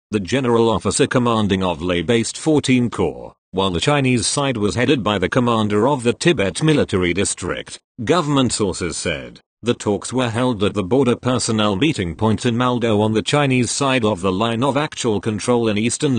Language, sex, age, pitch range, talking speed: English, male, 40-59, 100-130 Hz, 185 wpm